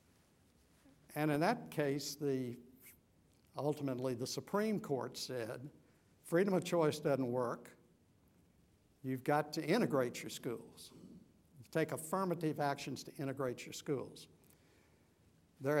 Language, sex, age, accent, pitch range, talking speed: English, male, 60-79, American, 125-155 Hz, 105 wpm